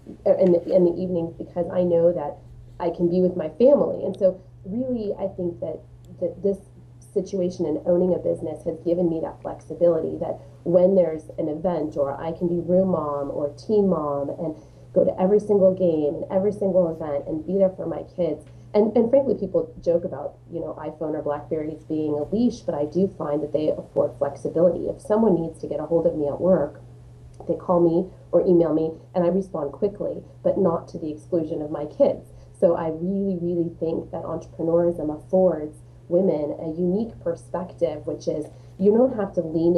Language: English